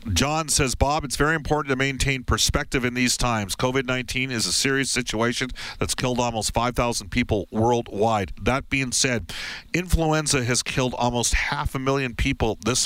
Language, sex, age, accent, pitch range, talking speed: English, male, 50-69, American, 105-140 Hz, 165 wpm